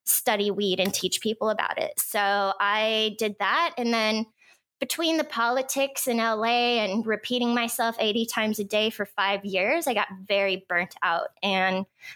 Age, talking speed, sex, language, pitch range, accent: 20-39, 170 wpm, female, English, 200-240 Hz, American